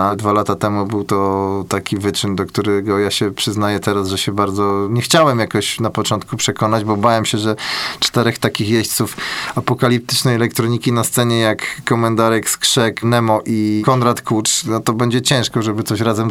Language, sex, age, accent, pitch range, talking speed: Polish, male, 20-39, native, 105-125 Hz, 175 wpm